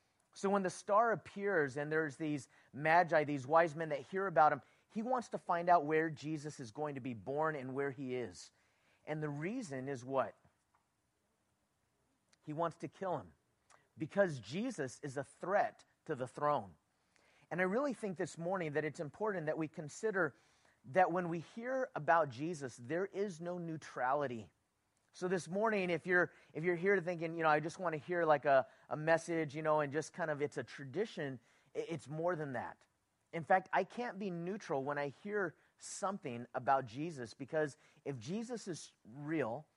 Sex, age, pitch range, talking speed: male, 30-49, 140-180 Hz, 185 wpm